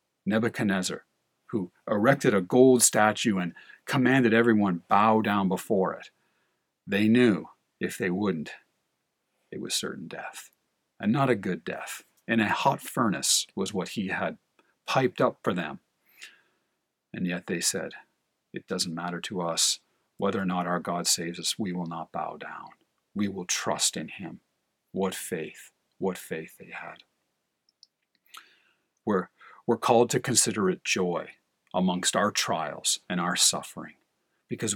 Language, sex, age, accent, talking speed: English, male, 50-69, American, 145 wpm